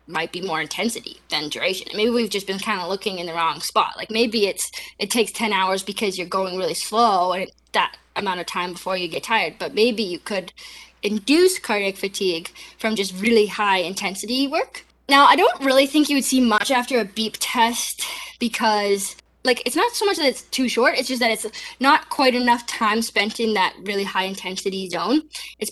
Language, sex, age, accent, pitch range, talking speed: English, female, 10-29, American, 190-260 Hz, 210 wpm